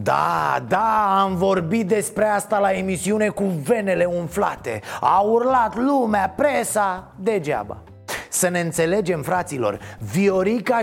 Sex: male